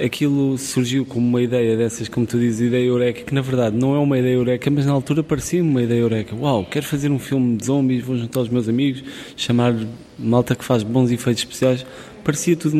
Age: 20-39